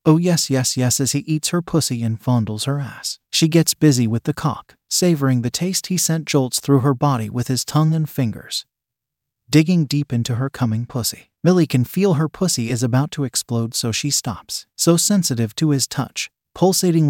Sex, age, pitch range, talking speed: male, 30-49, 120-160 Hz, 200 wpm